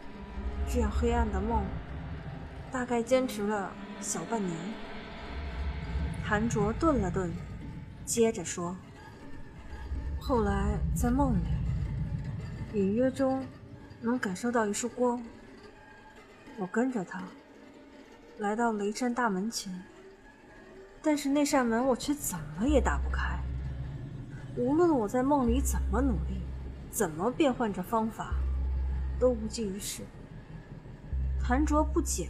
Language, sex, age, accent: Chinese, female, 20-39, native